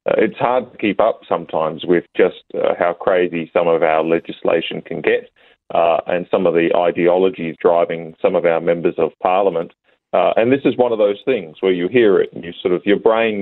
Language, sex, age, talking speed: English, male, 30-49, 220 wpm